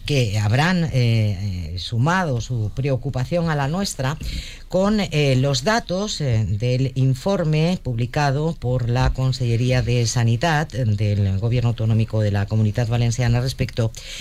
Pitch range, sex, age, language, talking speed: 110-155 Hz, female, 50-69, Spanish, 125 wpm